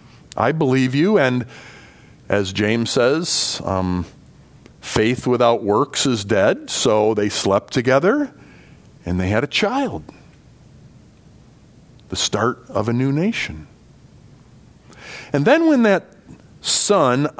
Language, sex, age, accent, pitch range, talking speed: English, male, 40-59, American, 120-175 Hz, 115 wpm